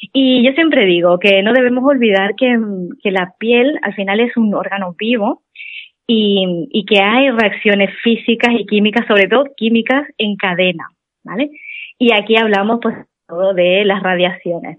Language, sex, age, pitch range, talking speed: Spanish, female, 20-39, 195-235 Hz, 160 wpm